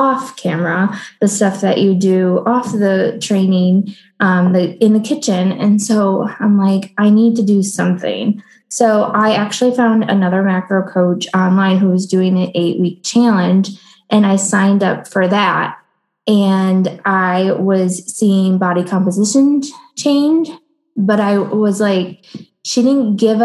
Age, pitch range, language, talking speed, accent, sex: 20-39, 185-225 Hz, English, 150 wpm, American, female